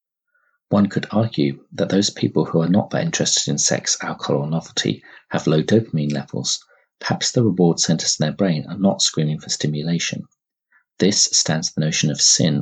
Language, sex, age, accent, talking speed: English, male, 40-59, British, 180 wpm